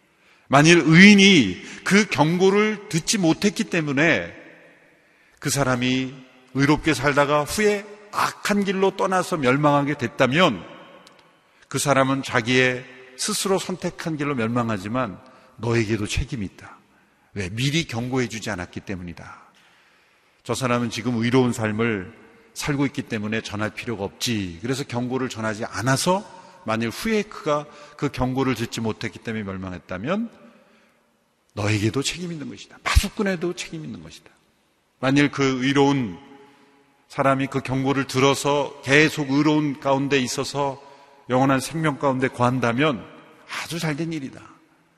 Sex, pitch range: male, 120-165 Hz